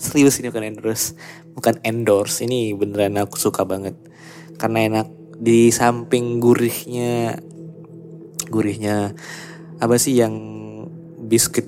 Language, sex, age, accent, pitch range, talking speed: Indonesian, male, 20-39, native, 105-165 Hz, 110 wpm